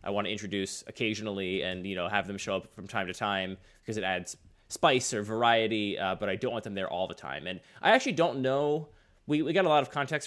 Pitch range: 100-135 Hz